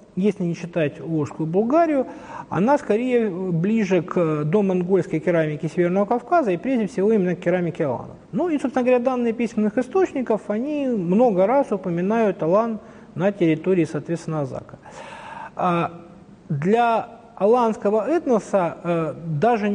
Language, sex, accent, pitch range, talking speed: Russian, male, native, 170-225 Hz, 120 wpm